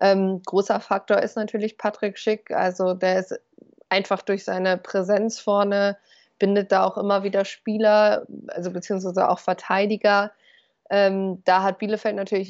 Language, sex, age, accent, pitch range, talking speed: German, female, 20-39, German, 190-210 Hz, 145 wpm